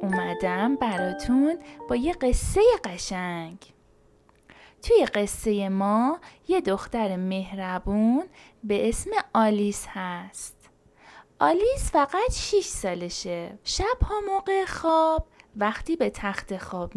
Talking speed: 100 wpm